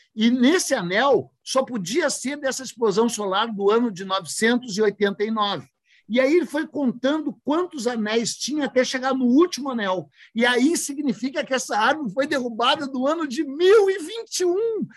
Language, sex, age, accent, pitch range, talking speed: Portuguese, male, 50-69, Brazilian, 240-320 Hz, 150 wpm